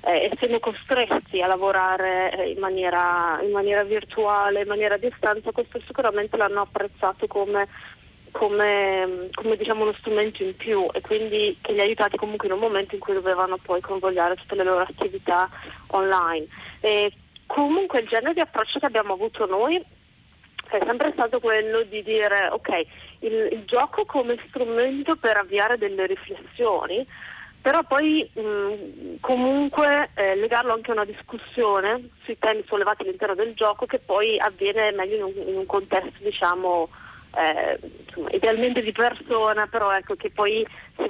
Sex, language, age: female, Italian, 30-49